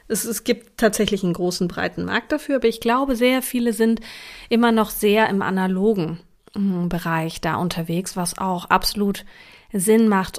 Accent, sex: German, female